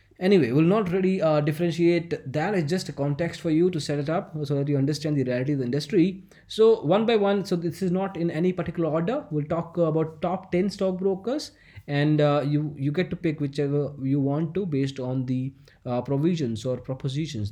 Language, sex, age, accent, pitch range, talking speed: English, male, 20-39, Indian, 135-175 Hz, 210 wpm